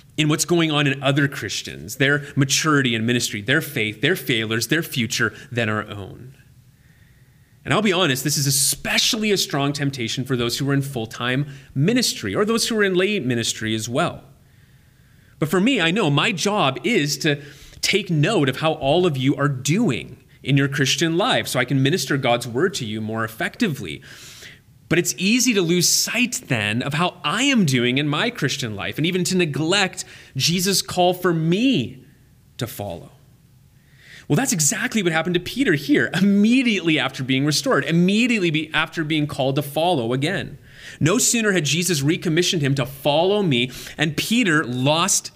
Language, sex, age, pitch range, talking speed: English, male, 30-49, 130-180 Hz, 180 wpm